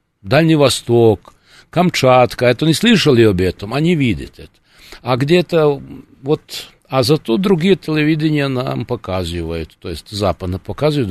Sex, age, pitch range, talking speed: male, 60-79, 105-145 Hz, 130 wpm